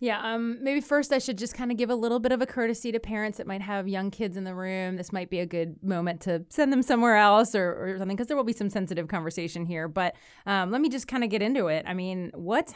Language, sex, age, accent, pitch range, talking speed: English, female, 30-49, American, 175-225 Hz, 285 wpm